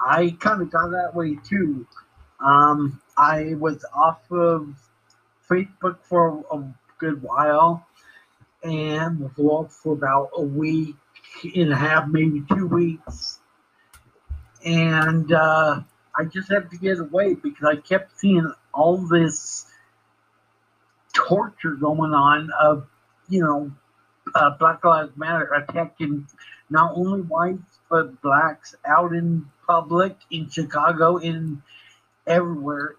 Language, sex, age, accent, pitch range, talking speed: English, male, 50-69, American, 145-170 Hz, 120 wpm